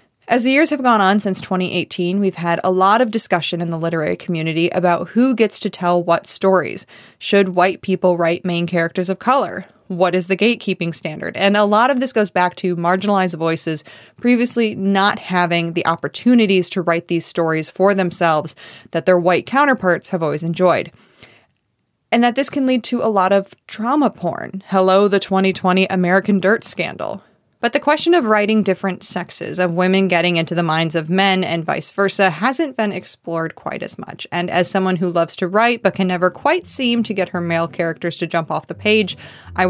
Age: 20-39